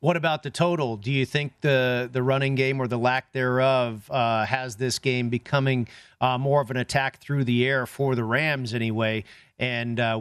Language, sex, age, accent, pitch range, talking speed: English, male, 40-59, American, 125-155 Hz, 200 wpm